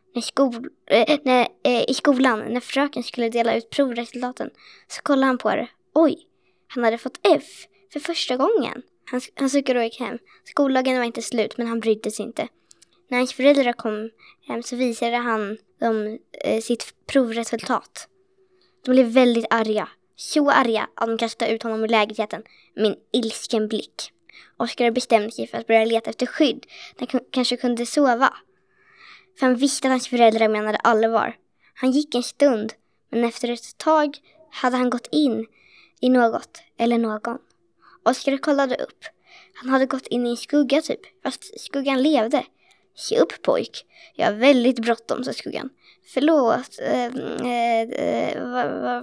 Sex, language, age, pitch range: female, Swedish, 20-39, 230-280 Hz